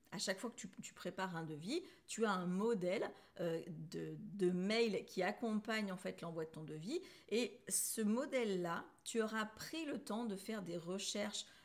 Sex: female